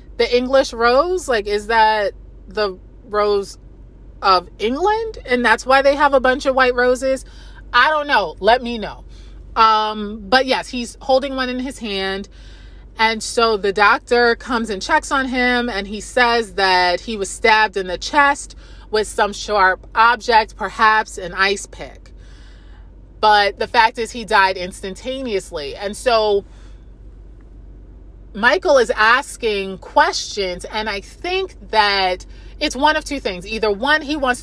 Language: English